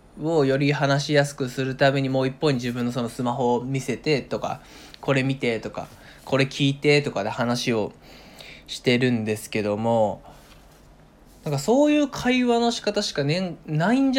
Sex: male